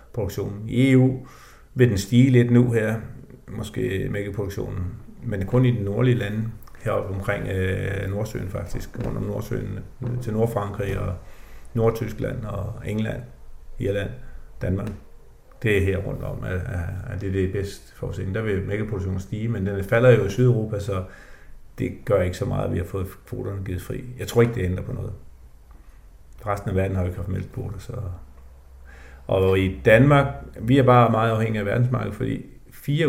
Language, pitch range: Danish, 95-120 Hz